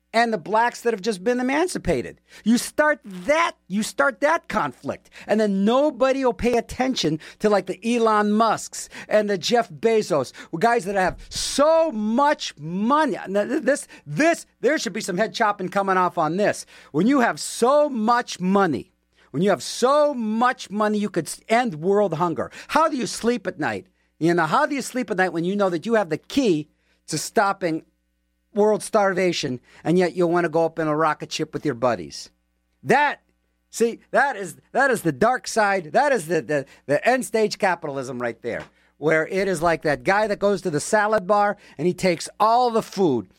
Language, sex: English, male